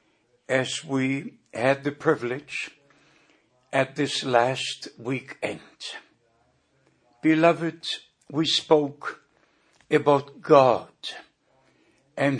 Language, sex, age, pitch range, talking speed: English, male, 60-79, 140-160 Hz, 75 wpm